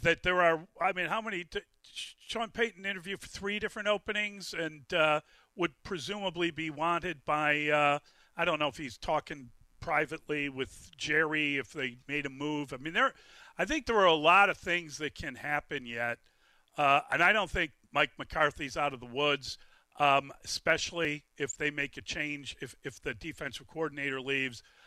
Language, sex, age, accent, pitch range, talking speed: English, male, 40-59, American, 145-175 Hz, 190 wpm